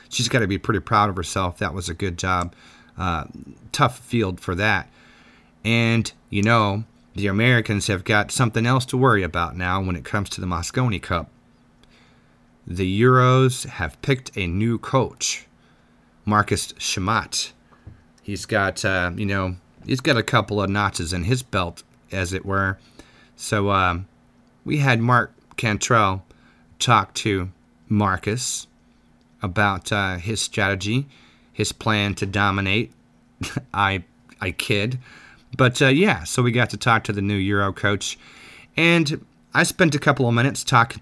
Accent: American